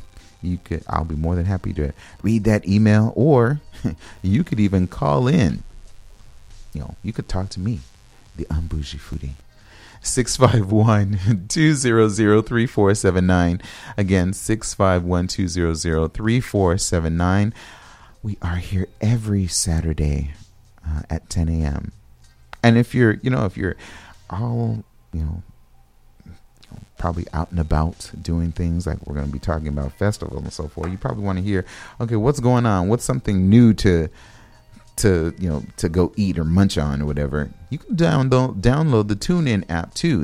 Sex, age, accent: male, 30-49, American